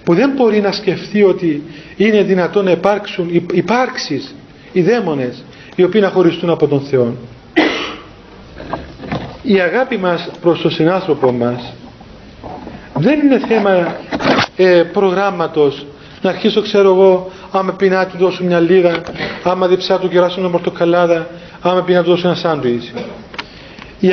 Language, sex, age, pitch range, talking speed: Greek, male, 40-59, 175-220 Hz, 140 wpm